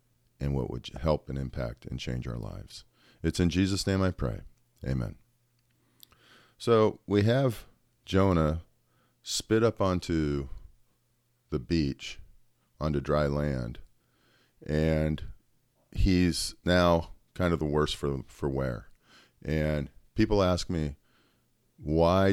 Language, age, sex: English, 40-59, male